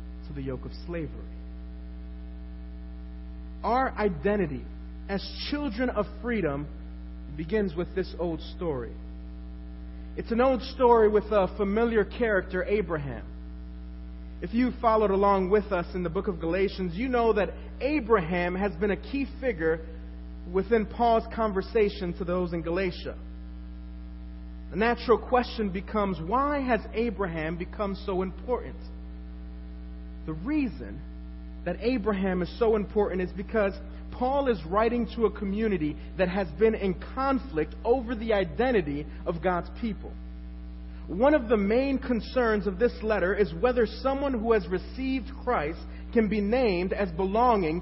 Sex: male